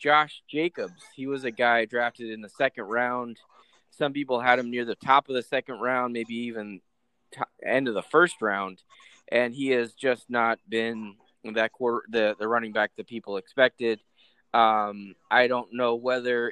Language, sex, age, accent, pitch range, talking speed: English, male, 20-39, American, 110-130 Hz, 180 wpm